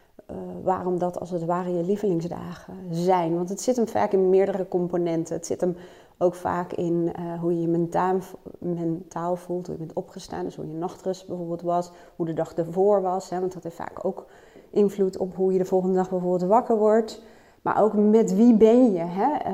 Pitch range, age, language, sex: 170-205 Hz, 30-49, Dutch, female